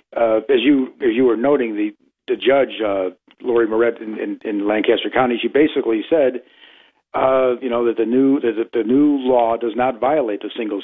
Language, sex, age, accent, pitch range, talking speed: English, male, 50-69, American, 120-170 Hz, 200 wpm